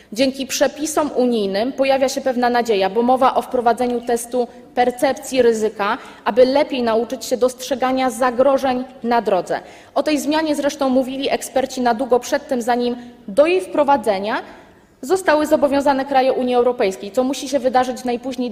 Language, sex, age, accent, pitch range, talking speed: Polish, female, 20-39, native, 235-280 Hz, 150 wpm